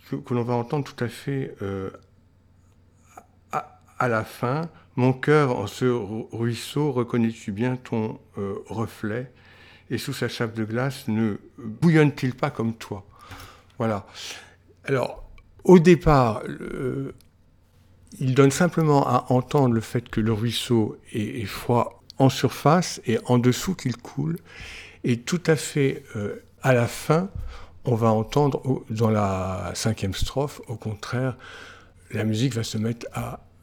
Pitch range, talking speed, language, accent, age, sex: 105-130 Hz, 150 wpm, French, French, 60-79, male